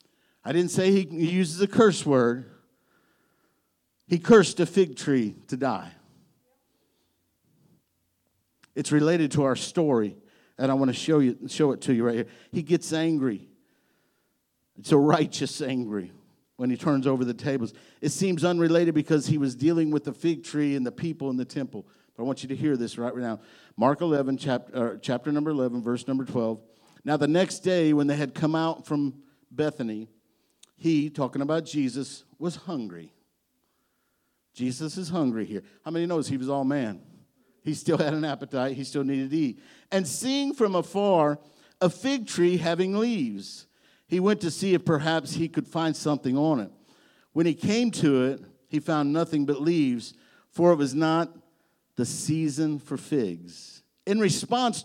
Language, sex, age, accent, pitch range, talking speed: English, male, 50-69, American, 130-170 Hz, 175 wpm